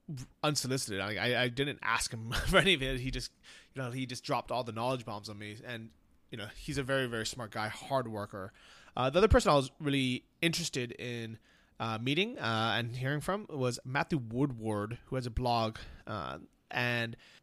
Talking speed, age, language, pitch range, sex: 205 wpm, 20-39, English, 115-140 Hz, male